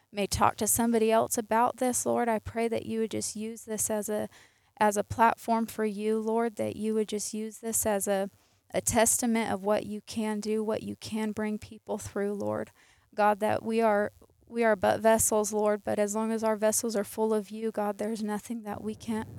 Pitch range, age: 210-225 Hz, 20-39